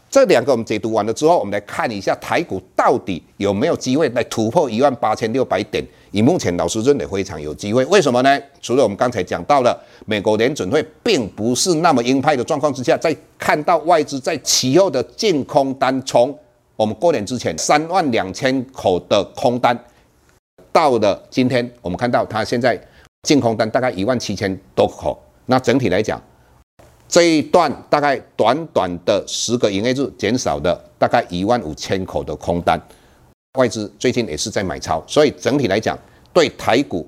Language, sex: Chinese, male